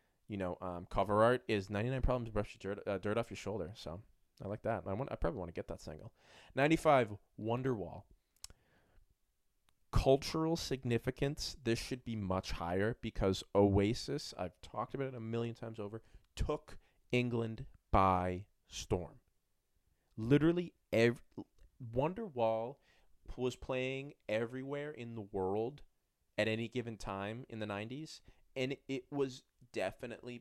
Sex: male